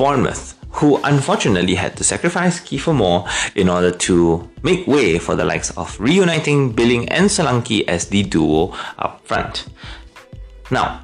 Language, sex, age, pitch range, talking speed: English, male, 30-49, 95-165 Hz, 145 wpm